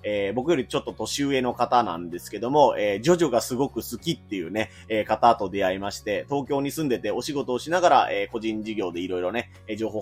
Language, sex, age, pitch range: Japanese, male, 20-39, 100-140 Hz